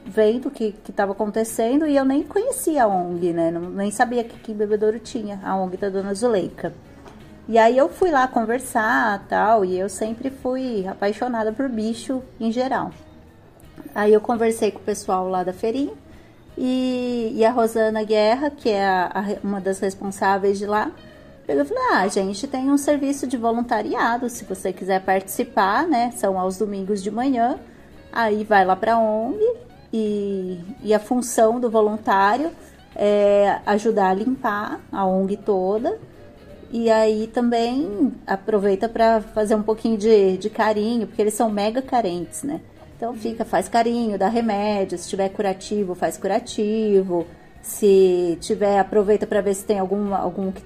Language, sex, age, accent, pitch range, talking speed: Portuguese, female, 30-49, Brazilian, 200-240 Hz, 160 wpm